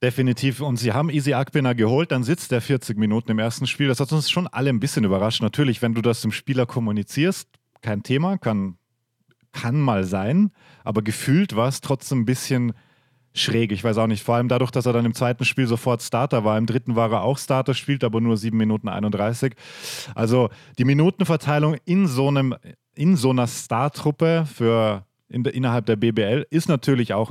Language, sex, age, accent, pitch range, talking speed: German, male, 30-49, German, 115-145 Hz, 200 wpm